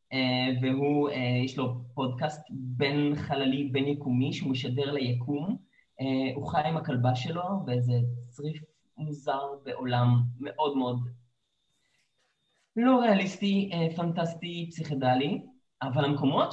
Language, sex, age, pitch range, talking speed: Hebrew, male, 20-39, 130-160 Hz, 115 wpm